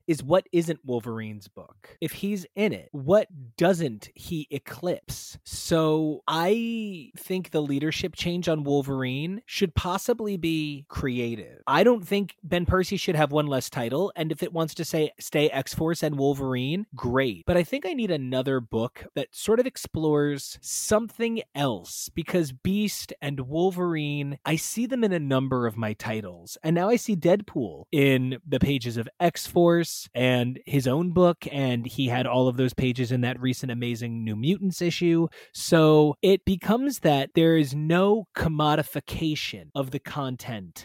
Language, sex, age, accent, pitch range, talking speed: English, male, 20-39, American, 125-175 Hz, 165 wpm